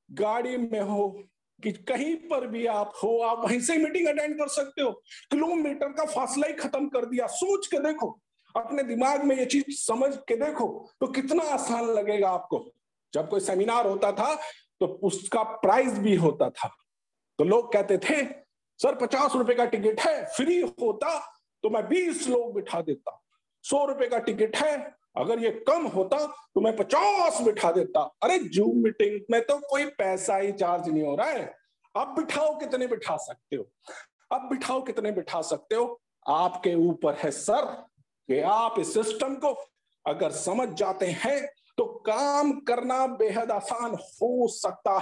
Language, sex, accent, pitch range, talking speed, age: Hindi, male, native, 210-295 Hz, 175 wpm, 50-69